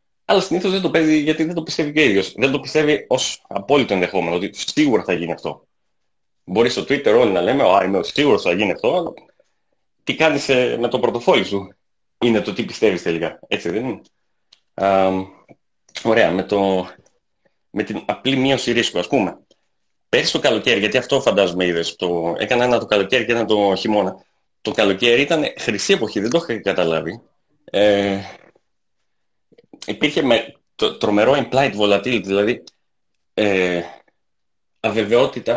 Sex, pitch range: male, 100-145 Hz